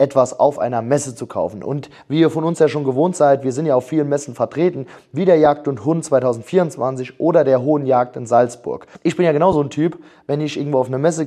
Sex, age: male, 30-49